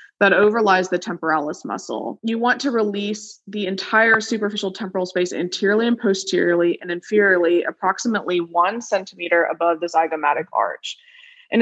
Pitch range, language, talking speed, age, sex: 175-220 Hz, English, 140 wpm, 20-39, female